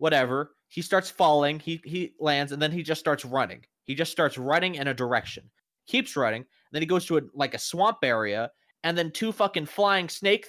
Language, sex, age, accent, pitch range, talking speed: English, male, 20-39, American, 145-200 Hz, 215 wpm